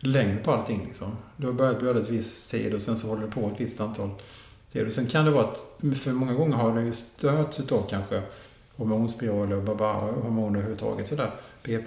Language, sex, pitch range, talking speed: Swedish, male, 110-130 Hz, 210 wpm